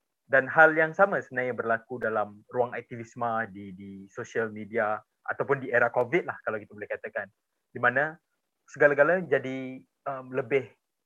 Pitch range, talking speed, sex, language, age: 105-140 Hz, 150 wpm, male, Malay, 20-39